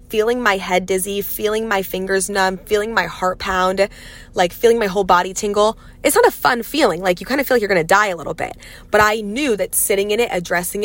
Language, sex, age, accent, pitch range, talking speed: English, female, 20-39, American, 180-220 Hz, 245 wpm